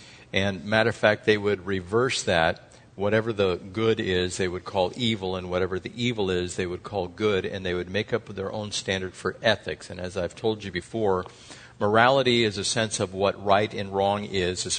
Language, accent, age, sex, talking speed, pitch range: English, American, 50-69, male, 210 wpm, 95-115 Hz